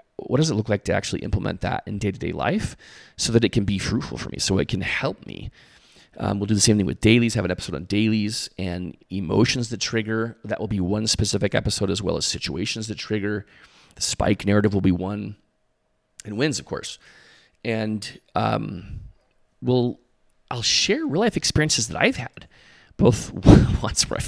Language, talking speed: English, 195 wpm